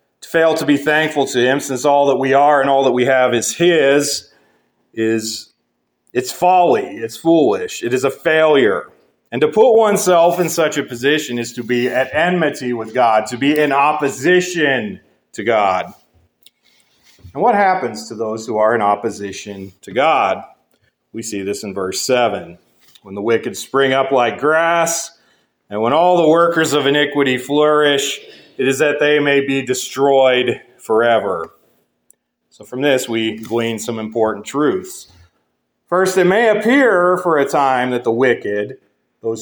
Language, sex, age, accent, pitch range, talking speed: English, male, 40-59, American, 125-175 Hz, 165 wpm